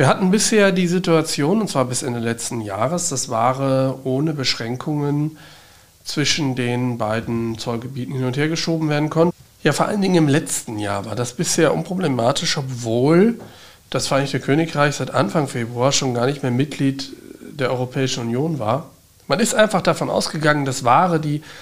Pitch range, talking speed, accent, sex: 115-155 Hz, 170 wpm, German, male